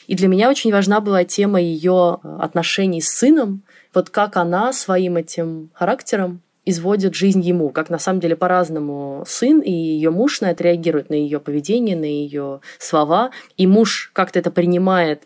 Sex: female